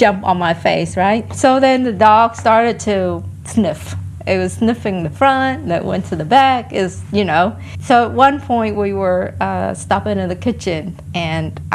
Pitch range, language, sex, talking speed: 180-235 Hz, English, female, 190 wpm